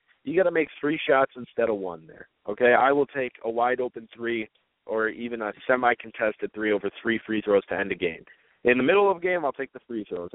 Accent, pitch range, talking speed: American, 110-145 Hz, 250 wpm